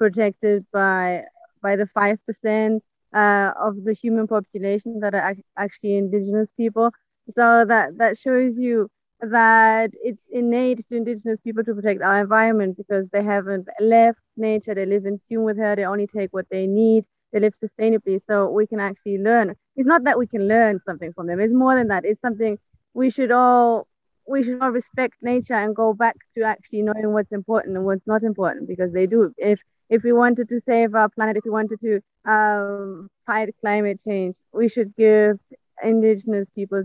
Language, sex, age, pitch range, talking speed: English, female, 20-39, 200-225 Hz, 190 wpm